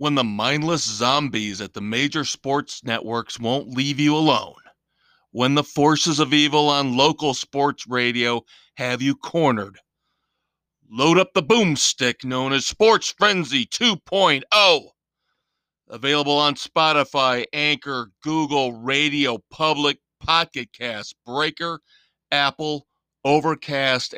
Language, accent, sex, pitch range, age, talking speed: English, American, male, 125-150 Hz, 40-59, 115 wpm